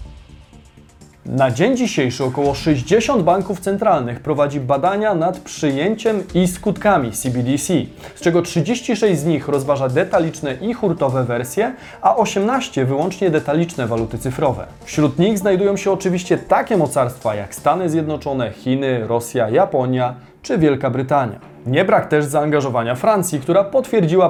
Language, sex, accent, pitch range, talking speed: Polish, male, native, 130-185 Hz, 130 wpm